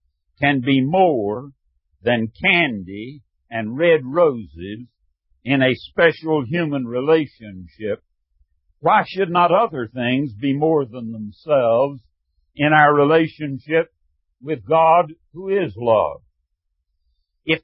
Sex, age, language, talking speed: male, 60-79, English, 105 wpm